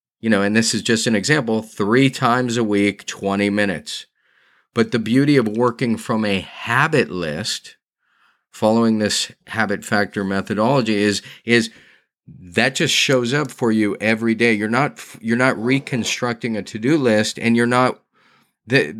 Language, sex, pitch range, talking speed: English, male, 105-125 Hz, 160 wpm